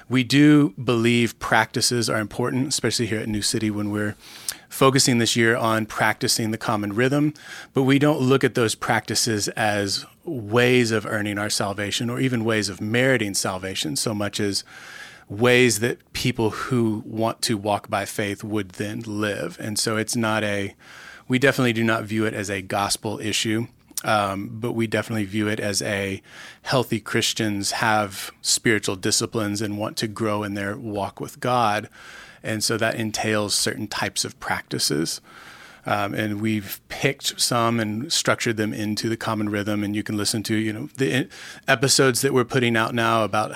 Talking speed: 175 wpm